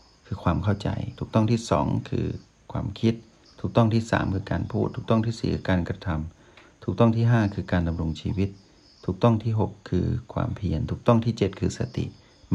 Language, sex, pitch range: Thai, male, 95-115 Hz